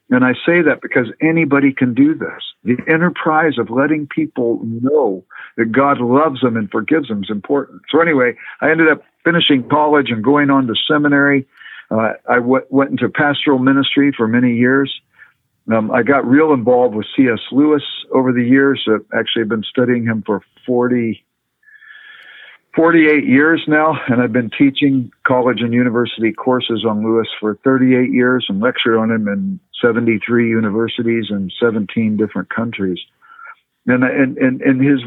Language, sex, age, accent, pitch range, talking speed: English, male, 50-69, American, 115-145 Hz, 165 wpm